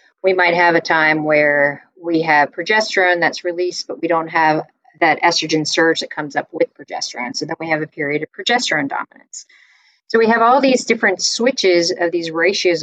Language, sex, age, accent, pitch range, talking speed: English, female, 40-59, American, 155-195 Hz, 195 wpm